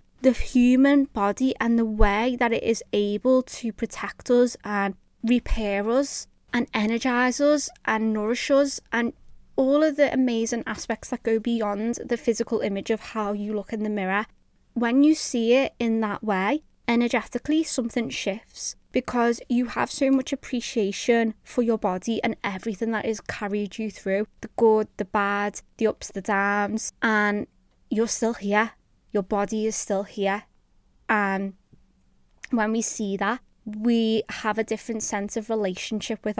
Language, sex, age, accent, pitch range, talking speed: English, female, 20-39, British, 210-250 Hz, 160 wpm